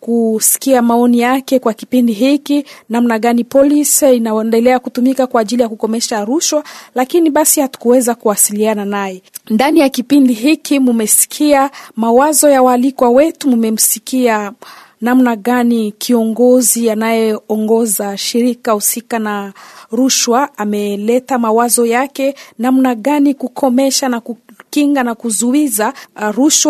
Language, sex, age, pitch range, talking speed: French, female, 40-59, 230-275 Hz, 125 wpm